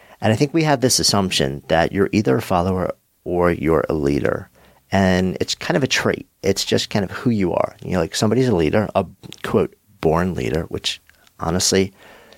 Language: English